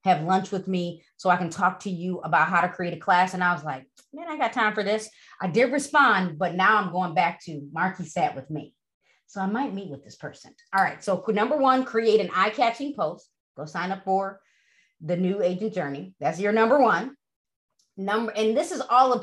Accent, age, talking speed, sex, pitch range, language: American, 30-49, 230 wpm, female, 175-240 Hz, English